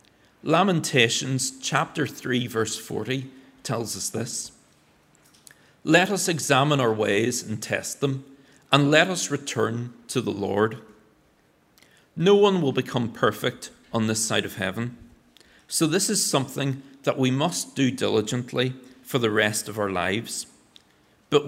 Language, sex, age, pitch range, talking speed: English, male, 40-59, 110-140 Hz, 135 wpm